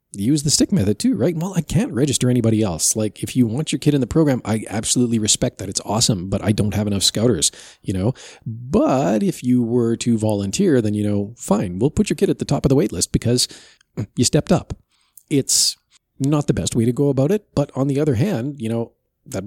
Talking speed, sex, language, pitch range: 235 wpm, male, English, 100-130 Hz